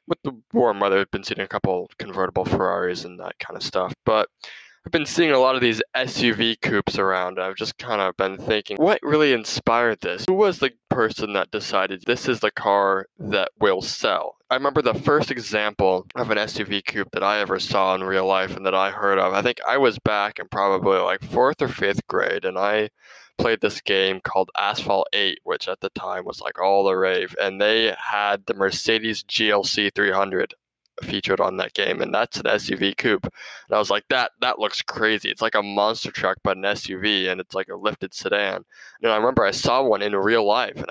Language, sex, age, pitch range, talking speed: English, male, 20-39, 95-115 Hz, 220 wpm